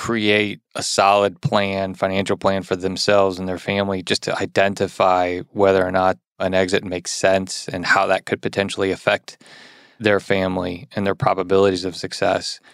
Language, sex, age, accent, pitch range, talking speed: English, male, 20-39, American, 95-110 Hz, 160 wpm